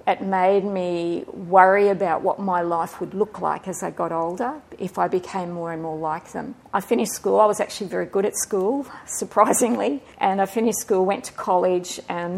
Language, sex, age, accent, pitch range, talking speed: English, female, 50-69, Australian, 180-235 Hz, 205 wpm